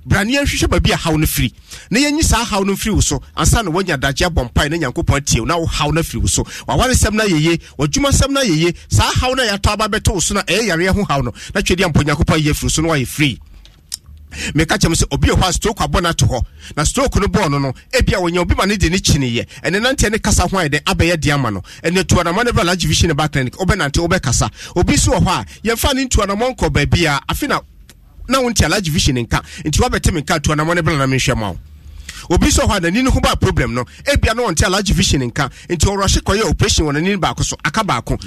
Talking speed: 245 wpm